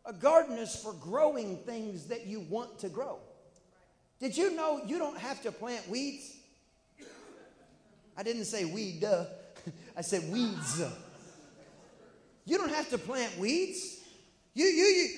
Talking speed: 145 wpm